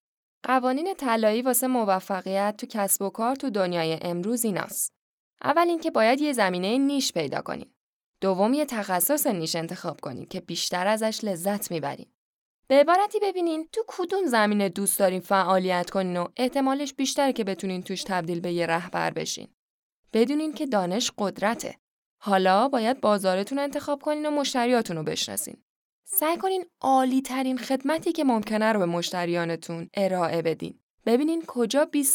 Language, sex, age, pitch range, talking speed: Persian, female, 10-29, 190-285 Hz, 150 wpm